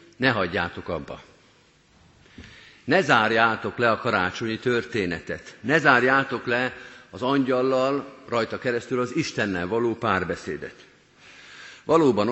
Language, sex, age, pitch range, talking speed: Hungarian, male, 50-69, 100-135 Hz, 100 wpm